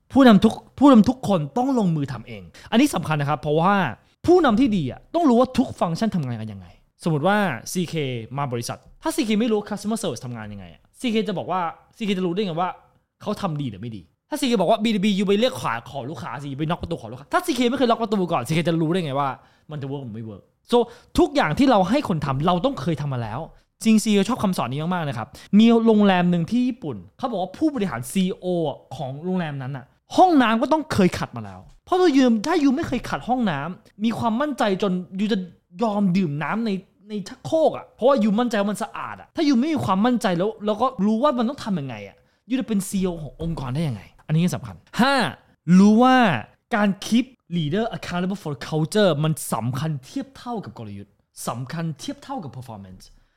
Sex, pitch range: male, 140-225 Hz